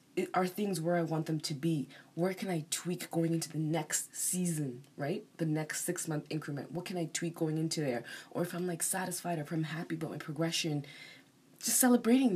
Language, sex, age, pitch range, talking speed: English, female, 20-39, 140-175 Hz, 215 wpm